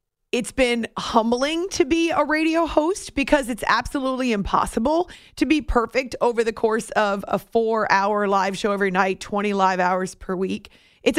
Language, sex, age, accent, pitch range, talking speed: English, female, 30-49, American, 200-255 Hz, 165 wpm